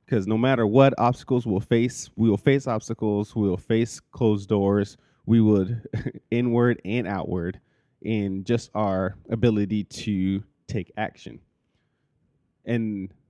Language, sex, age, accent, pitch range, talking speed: English, male, 30-49, American, 95-120 Hz, 130 wpm